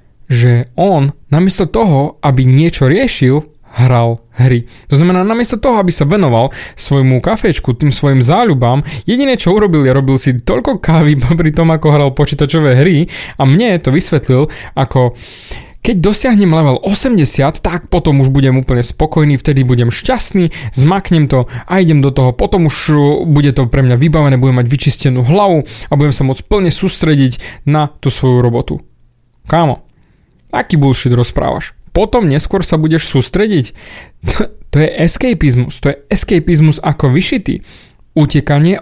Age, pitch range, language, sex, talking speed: 20-39, 130-165 Hz, Slovak, male, 155 wpm